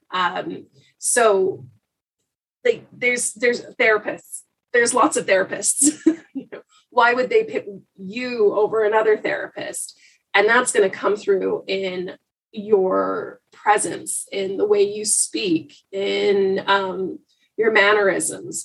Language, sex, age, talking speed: English, female, 30-49, 120 wpm